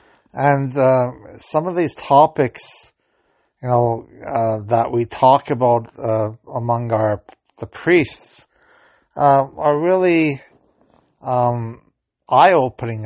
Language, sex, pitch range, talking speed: English, male, 115-135 Hz, 110 wpm